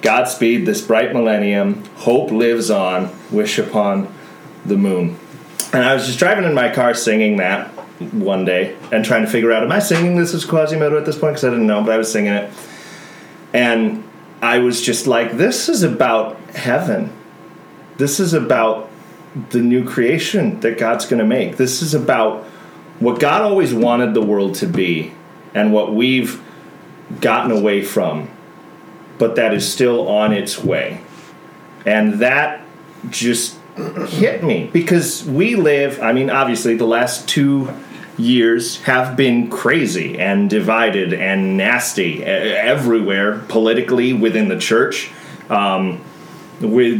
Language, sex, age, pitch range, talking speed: English, male, 30-49, 105-140 Hz, 150 wpm